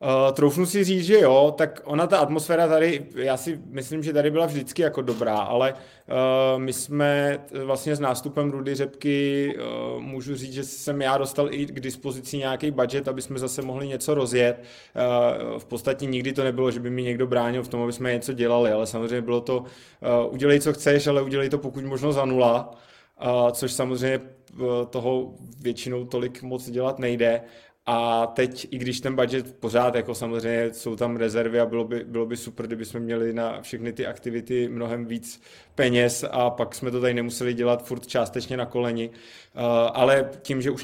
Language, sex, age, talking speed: Czech, male, 20-39, 190 wpm